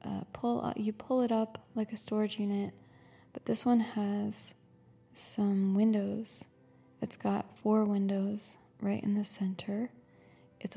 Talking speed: 145 wpm